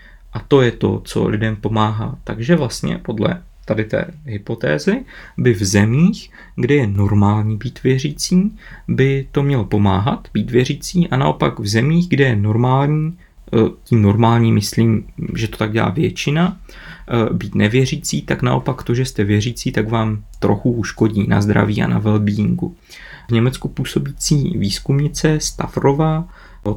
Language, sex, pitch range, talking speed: Czech, male, 105-135 Hz, 145 wpm